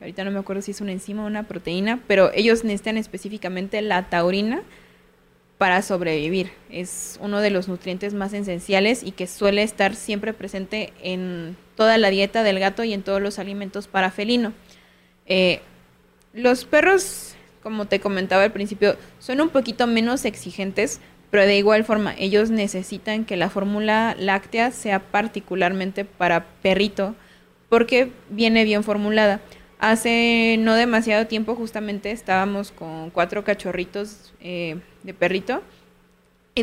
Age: 20-39